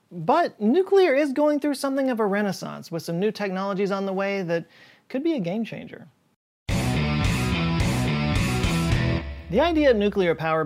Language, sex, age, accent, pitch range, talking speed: English, male, 30-49, American, 145-185 Hz, 150 wpm